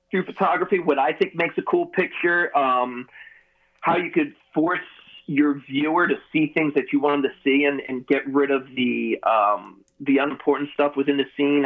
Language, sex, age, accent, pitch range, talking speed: English, male, 30-49, American, 135-180 Hz, 190 wpm